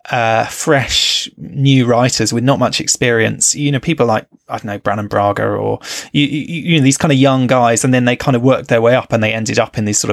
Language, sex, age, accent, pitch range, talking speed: English, male, 20-39, British, 110-130 Hz, 250 wpm